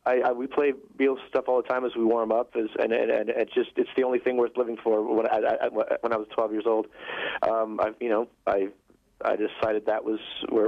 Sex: male